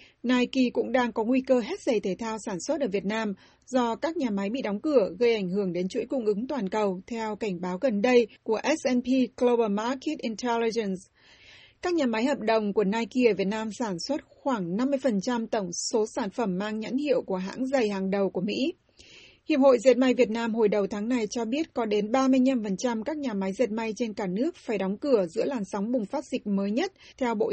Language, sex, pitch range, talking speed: Vietnamese, female, 215-260 Hz, 230 wpm